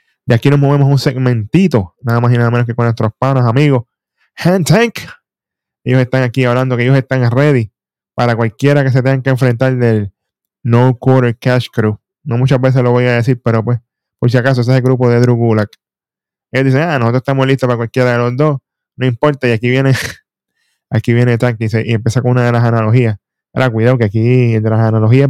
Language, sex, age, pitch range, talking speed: Spanish, male, 10-29, 115-135 Hz, 220 wpm